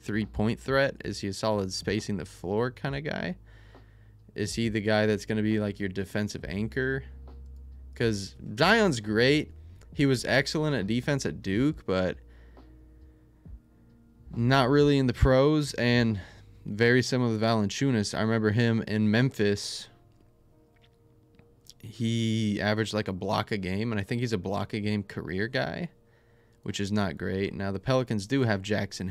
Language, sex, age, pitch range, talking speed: English, male, 20-39, 100-120 Hz, 160 wpm